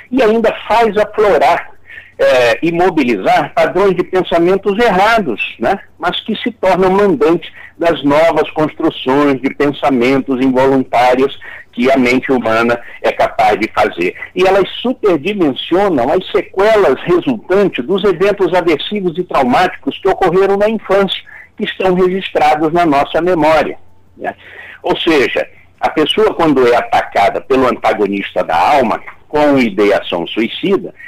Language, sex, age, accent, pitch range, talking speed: Portuguese, male, 60-79, Brazilian, 145-215 Hz, 125 wpm